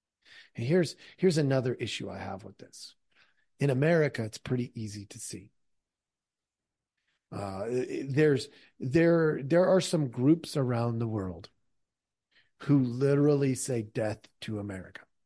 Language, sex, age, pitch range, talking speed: English, male, 40-59, 110-165 Hz, 125 wpm